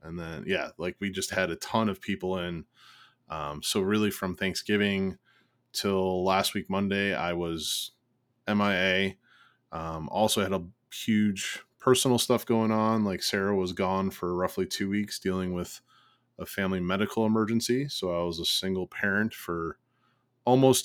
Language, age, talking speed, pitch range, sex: English, 20-39, 160 wpm, 90-115 Hz, male